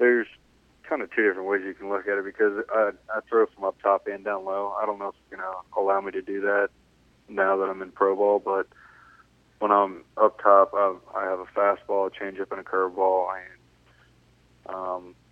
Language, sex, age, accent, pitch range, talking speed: English, male, 20-39, American, 95-100 Hz, 220 wpm